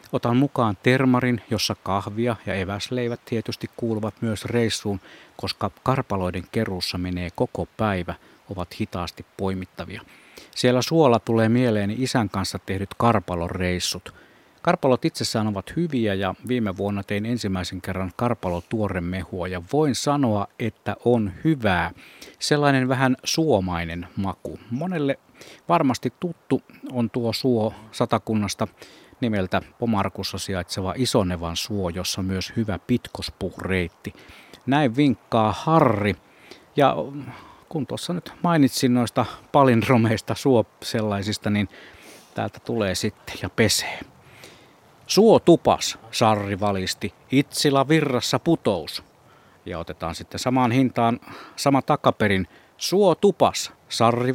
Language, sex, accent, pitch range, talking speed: Finnish, male, native, 95-125 Hz, 110 wpm